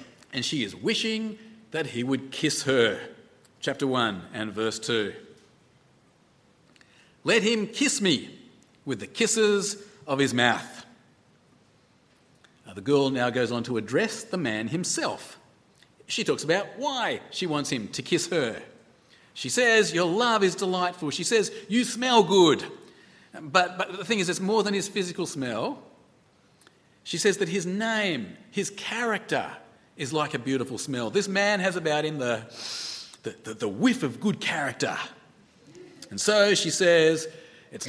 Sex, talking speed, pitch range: male, 155 wpm, 130-205 Hz